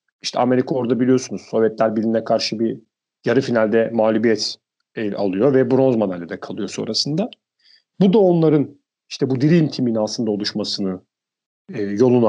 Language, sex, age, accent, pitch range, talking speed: Turkish, male, 40-59, native, 125-180 Hz, 140 wpm